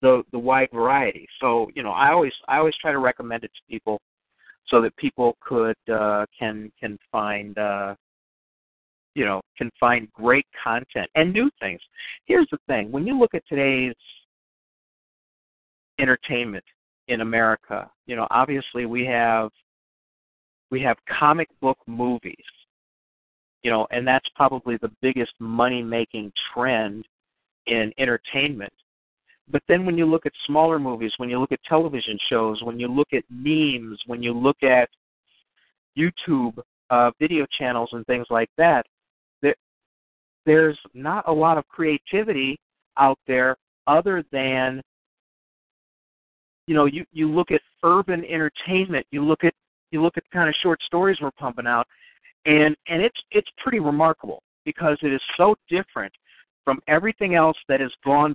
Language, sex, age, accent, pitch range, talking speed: English, male, 50-69, American, 115-155 Hz, 155 wpm